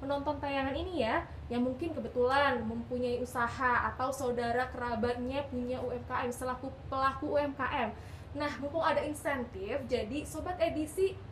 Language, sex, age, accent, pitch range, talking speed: Indonesian, female, 10-29, native, 250-310 Hz, 125 wpm